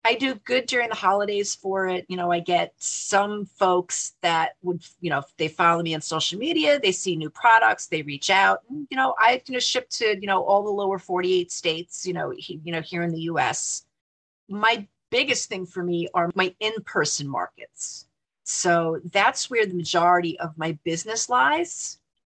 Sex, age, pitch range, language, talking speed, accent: female, 40-59, 180-245 Hz, English, 190 wpm, American